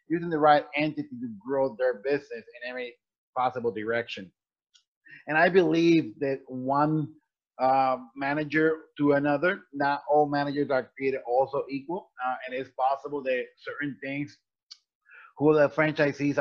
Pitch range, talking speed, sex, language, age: 125-160 Hz, 140 wpm, male, English, 30-49